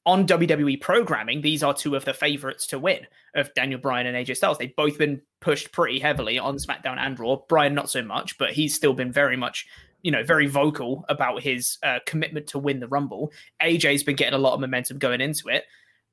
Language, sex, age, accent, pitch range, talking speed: English, male, 20-39, British, 140-180 Hz, 220 wpm